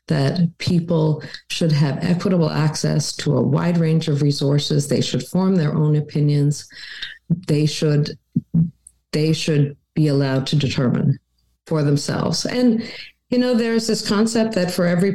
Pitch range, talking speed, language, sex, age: 145-190 Hz, 145 wpm, English, female, 50-69